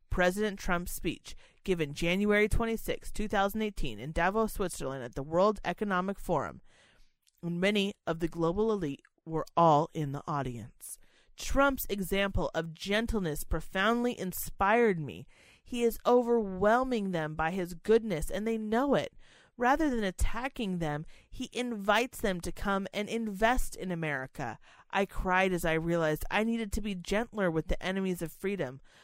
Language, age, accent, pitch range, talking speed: English, 30-49, American, 165-230 Hz, 150 wpm